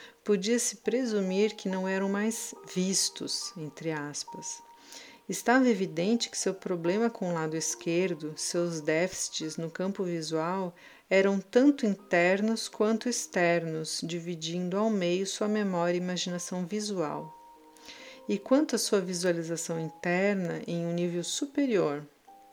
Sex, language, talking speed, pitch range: female, Portuguese, 125 wpm, 170-215 Hz